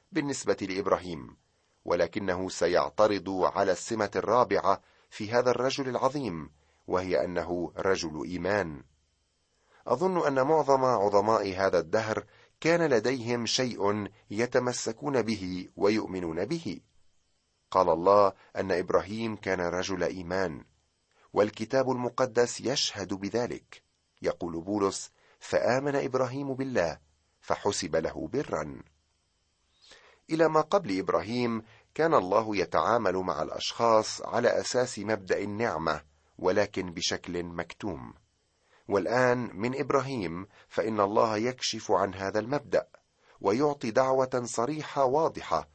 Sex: male